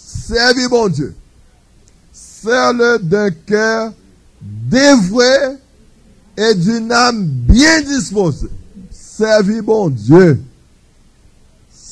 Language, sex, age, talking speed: French, male, 50-69, 75 wpm